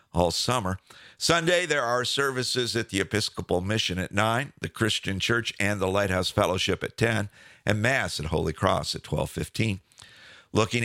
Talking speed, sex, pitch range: 160 wpm, male, 95-125 Hz